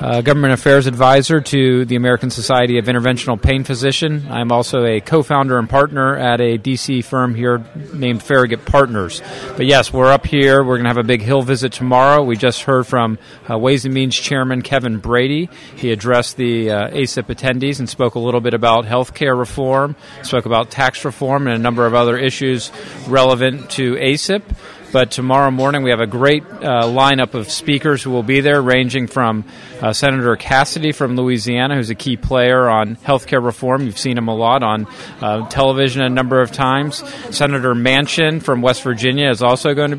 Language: English